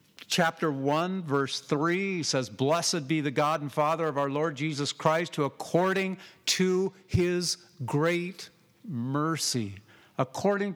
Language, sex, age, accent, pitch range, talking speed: English, male, 50-69, American, 150-185 Hz, 130 wpm